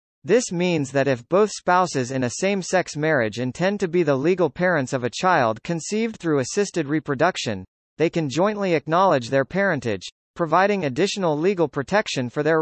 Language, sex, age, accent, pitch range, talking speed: English, male, 40-59, American, 140-190 Hz, 165 wpm